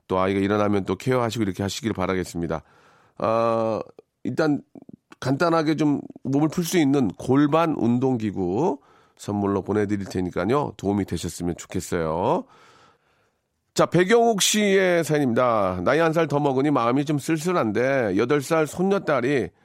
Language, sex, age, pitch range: Korean, male, 40-59, 110-165 Hz